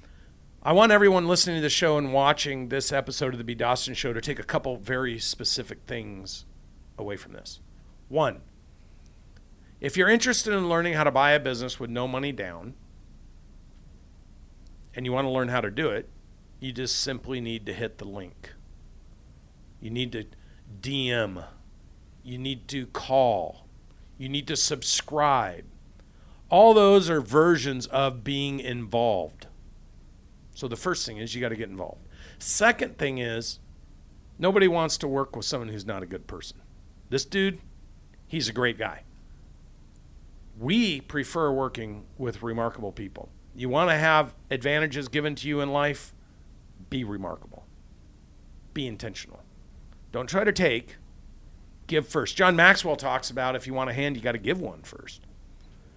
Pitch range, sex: 85-140 Hz, male